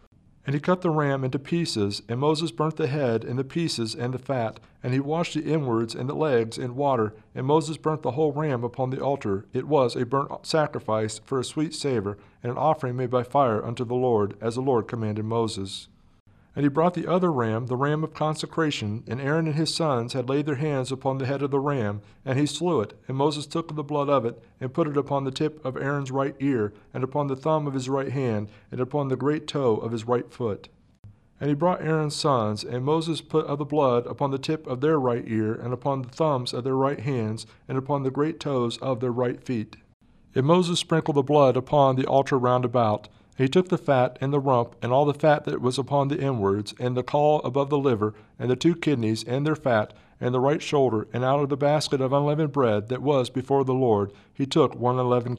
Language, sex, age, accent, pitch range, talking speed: English, male, 40-59, American, 120-145 Hz, 235 wpm